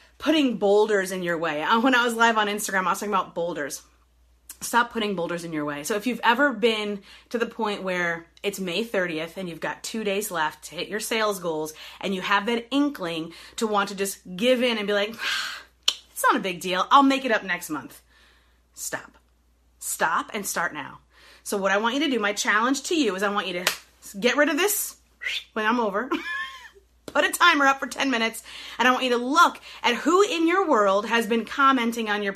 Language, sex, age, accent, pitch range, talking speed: English, female, 30-49, American, 195-280 Hz, 225 wpm